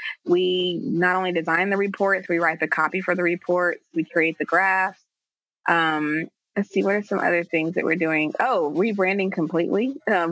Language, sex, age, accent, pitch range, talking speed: English, female, 20-39, American, 160-195 Hz, 185 wpm